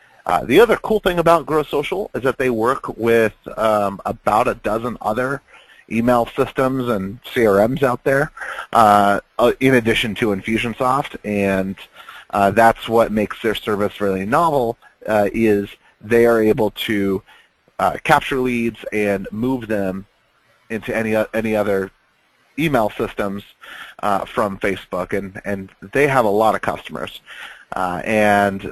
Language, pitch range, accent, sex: English, 100-120 Hz, American, male